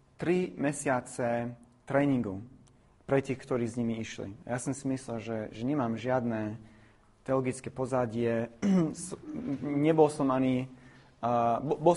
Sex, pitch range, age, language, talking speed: male, 115-140 Hz, 30-49, Slovak, 115 wpm